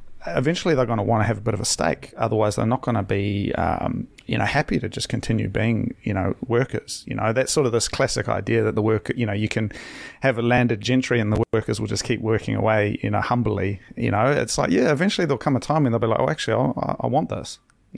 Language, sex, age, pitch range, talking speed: English, male, 30-49, 110-125 Hz, 265 wpm